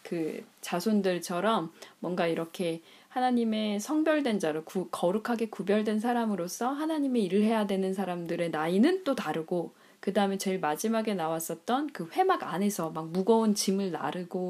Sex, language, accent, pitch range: female, Korean, native, 175-225 Hz